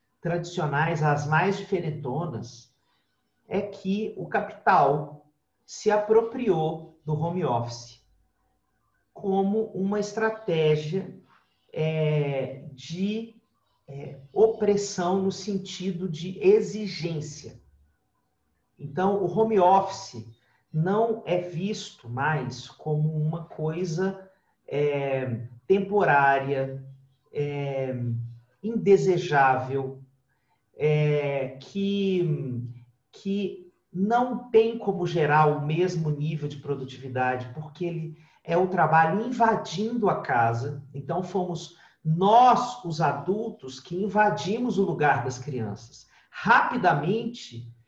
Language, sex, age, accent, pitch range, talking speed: Portuguese, male, 40-59, Brazilian, 140-200 Hz, 85 wpm